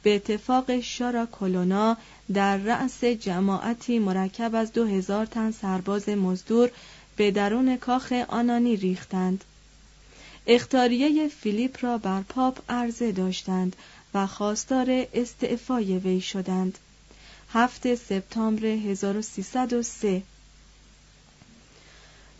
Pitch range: 195-245 Hz